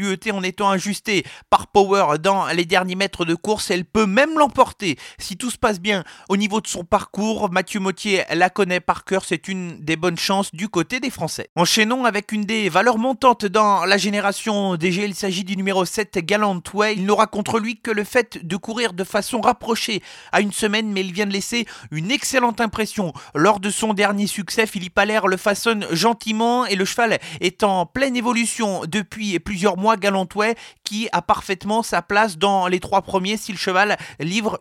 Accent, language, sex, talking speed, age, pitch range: French, French, male, 195 wpm, 30-49, 190-220 Hz